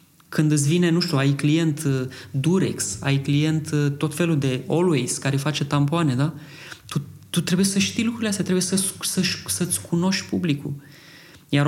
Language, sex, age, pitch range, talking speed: Romanian, male, 20-39, 140-170 Hz, 155 wpm